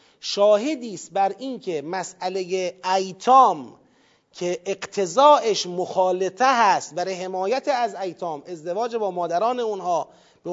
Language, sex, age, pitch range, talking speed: Persian, male, 40-59, 195-275 Hz, 110 wpm